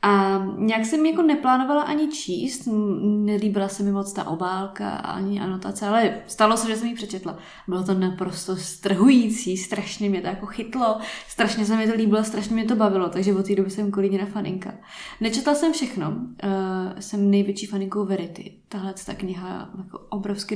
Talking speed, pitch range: 170 wpm, 185-215 Hz